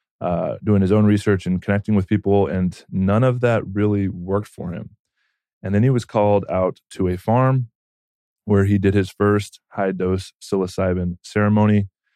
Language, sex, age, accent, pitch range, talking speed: English, male, 20-39, American, 90-100 Hz, 170 wpm